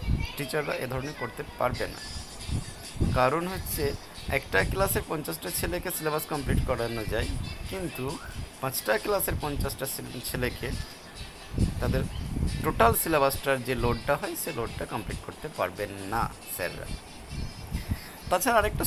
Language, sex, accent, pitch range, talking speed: Bengali, male, native, 105-140 Hz, 95 wpm